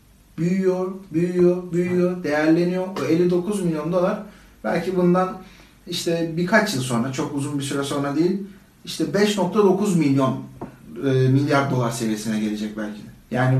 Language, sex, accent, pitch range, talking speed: Turkish, male, native, 135-180 Hz, 130 wpm